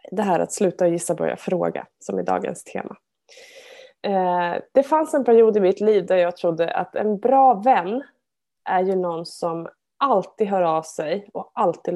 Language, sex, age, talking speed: Swedish, female, 20-39, 185 wpm